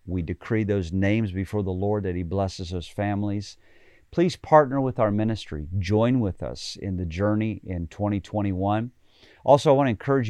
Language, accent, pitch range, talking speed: English, American, 90-110 Hz, 175 wpm